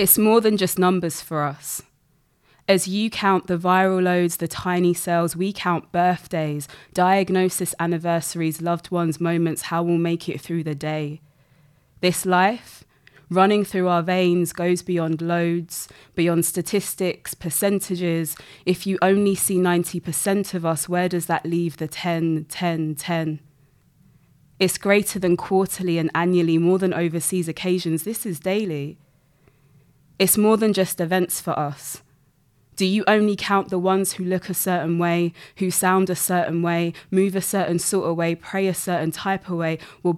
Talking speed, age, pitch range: 160 wpm, 20-39, 160-185 Hz